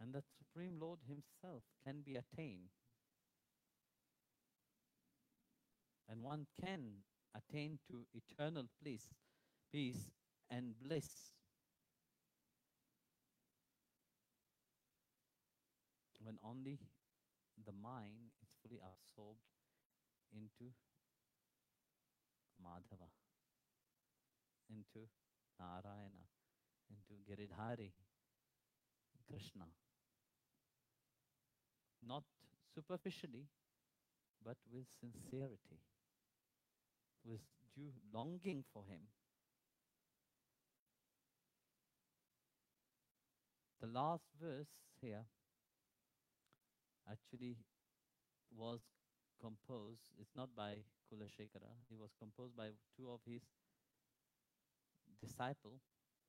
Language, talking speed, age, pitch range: Italian, 65 wpm, 50-69, 105-135 Hz